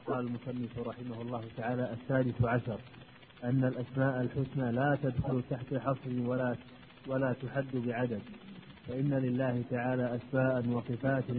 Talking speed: 120 wpm